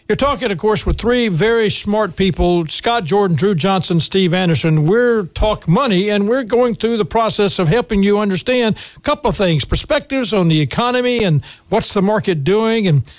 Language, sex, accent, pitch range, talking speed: English, male, American, 175-235 Hz, 190 wpm